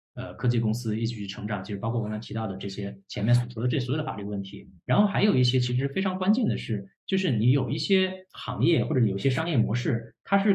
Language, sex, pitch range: Chinese, male, 115-150 Hz